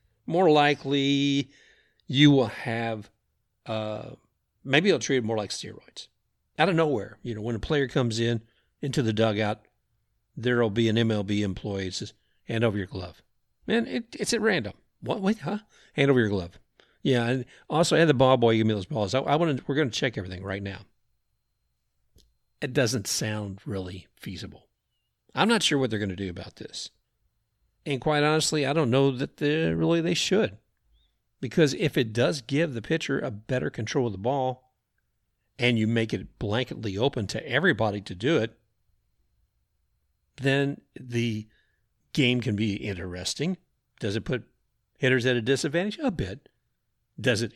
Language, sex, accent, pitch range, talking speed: English, male, American, 110-145 Hz, 175 wpm